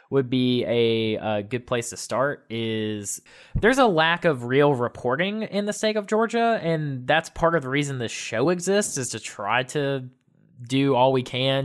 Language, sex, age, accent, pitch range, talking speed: English, male, 20-39, American, 120-175 Hz, 190 wpm